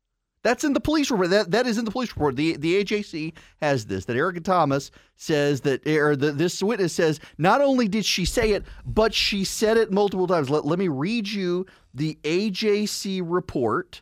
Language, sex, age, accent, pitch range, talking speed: English, male, 40-59, American, 140-205 Hz, 195 wpm